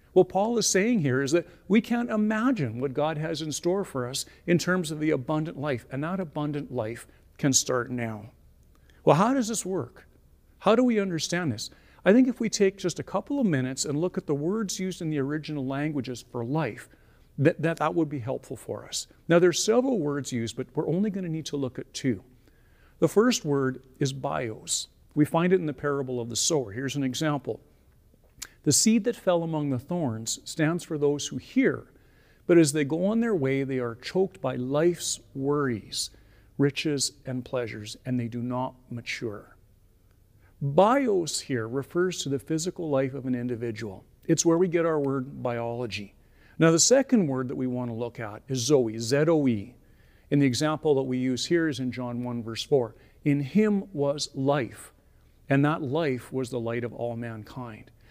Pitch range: 120-165 Hz